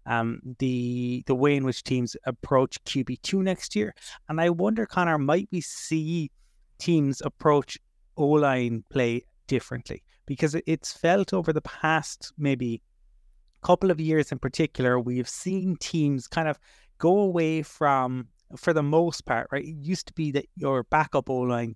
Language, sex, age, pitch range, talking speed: English, male, 30-49, 125-155 Hz, 155 wpm